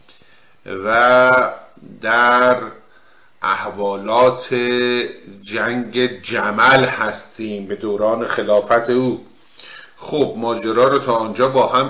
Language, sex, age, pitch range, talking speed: English, male, 50-69, 110-135 Hz, 85 wpm